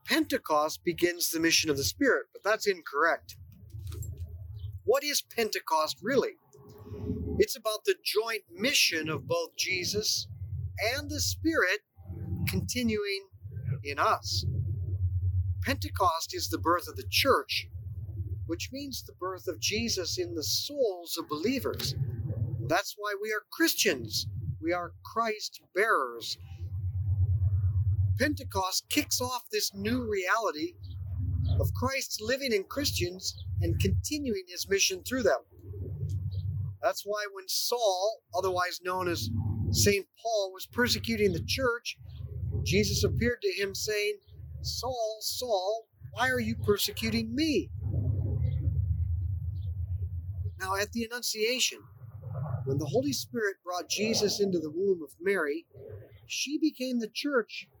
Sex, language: male, English